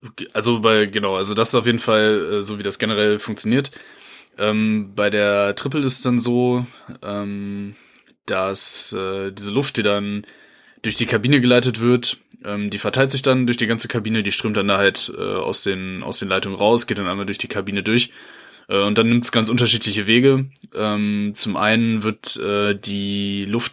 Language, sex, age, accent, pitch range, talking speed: German, male, 10-29, German, 100-120 Hz, 195 wpm